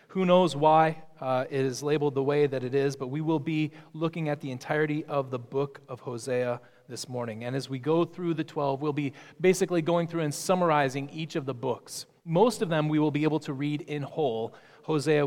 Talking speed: 225 wpm